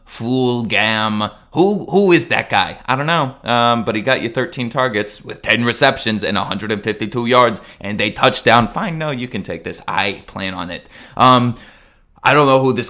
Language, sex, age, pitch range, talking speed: English, male, 20-39, 100-120 Hz, 195 wpm